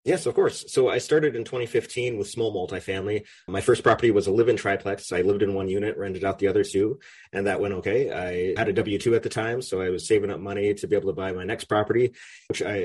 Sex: male